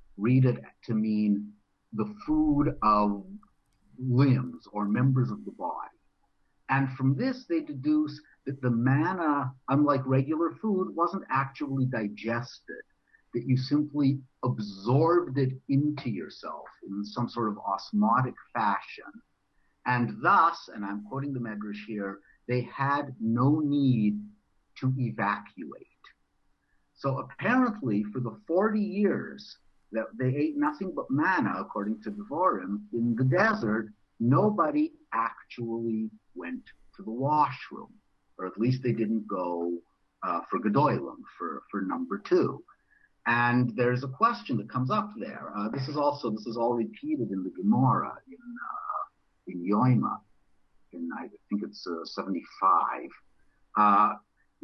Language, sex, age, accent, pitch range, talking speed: English, male, 50-69, American, 105-145 Hz, 135 wpm